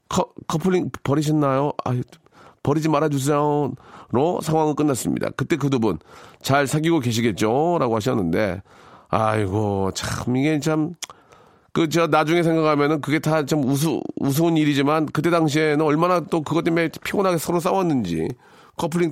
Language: Korean